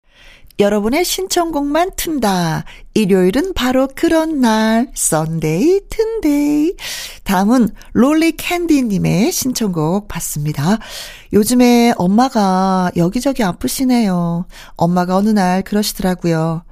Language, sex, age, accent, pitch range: Korean, female, 40-59, native, 170-230 Hz